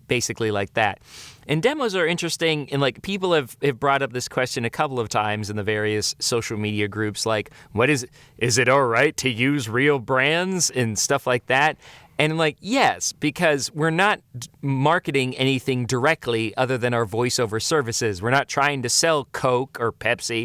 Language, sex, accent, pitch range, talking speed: English, male, American, 115-145 Hz, 190 wpm